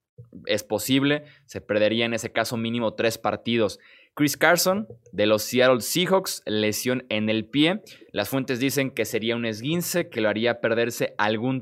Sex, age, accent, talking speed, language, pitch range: male, 20-39, Mexican, 165 wpm, Spanish, 110-145 Hz